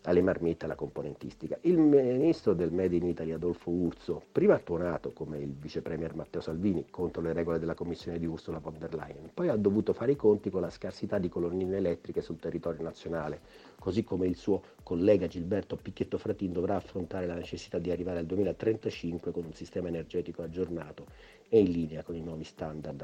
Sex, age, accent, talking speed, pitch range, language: male, 50-69, native, 190 wpm, 85-100 Hz, Italian